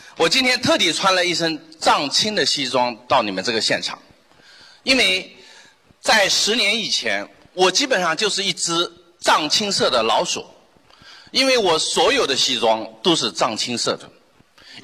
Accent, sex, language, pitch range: native, male, Chinese, 170-250 Hz